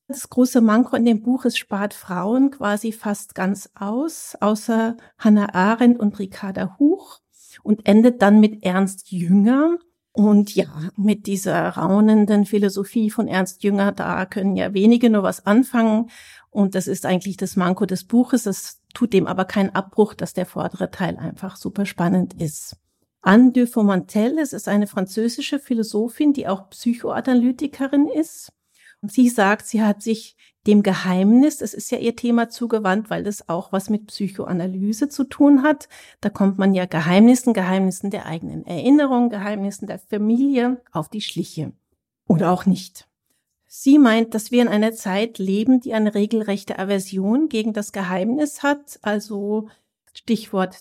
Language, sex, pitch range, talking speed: German, female, 195-235 Hz, 155 wpm